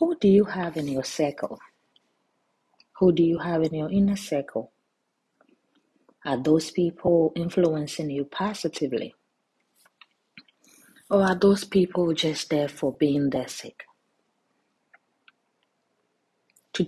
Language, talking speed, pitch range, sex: English, 115 wpm, 165-230 Hz, female